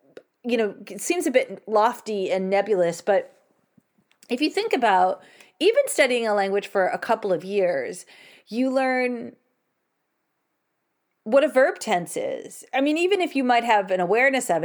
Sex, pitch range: female, 185-255 Hz